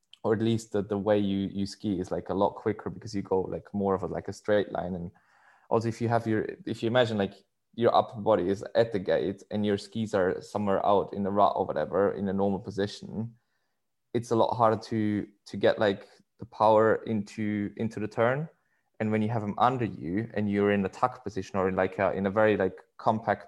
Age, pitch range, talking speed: 20-39, 100-115 Hz, 240 wpm